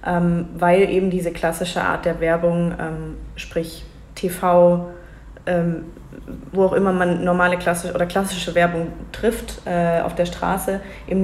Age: 20-39